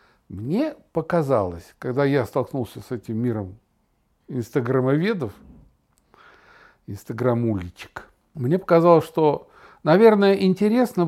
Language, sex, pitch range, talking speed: Russian, male, 135-190 Hz, 80 wpm